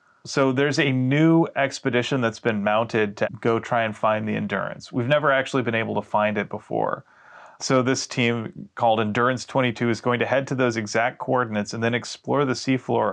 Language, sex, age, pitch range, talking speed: English, male, 30-49, 110-135 Hz, 195 wpm